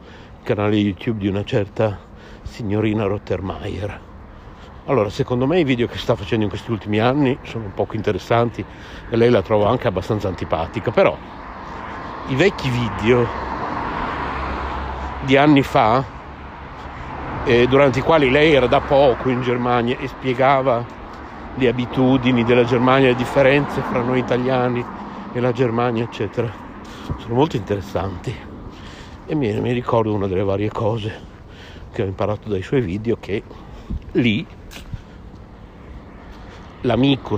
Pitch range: 100-125 Hz